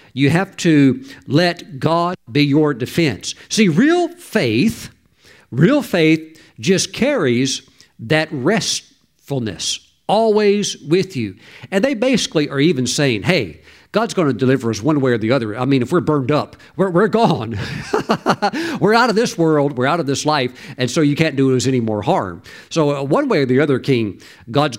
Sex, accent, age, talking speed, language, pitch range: male, American, 50-69, 180 wpm, English, 125-165 Hz